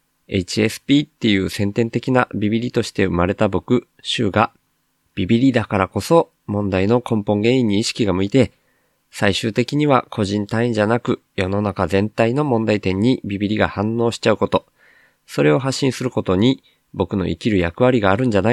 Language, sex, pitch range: Japanese, male, 95-125 Hz